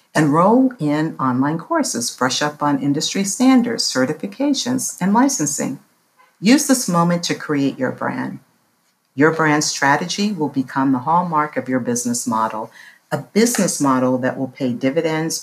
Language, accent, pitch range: English, American, 130-200 Hz